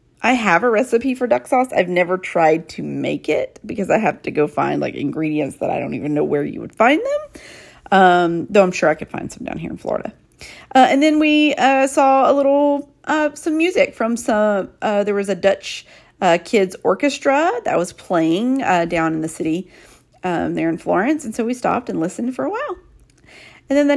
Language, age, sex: English, 40-59, female